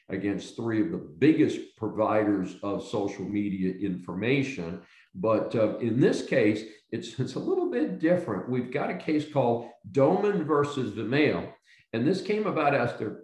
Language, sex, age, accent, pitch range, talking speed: English, male, 50-69, American, 105-155 Hz, 155 wpm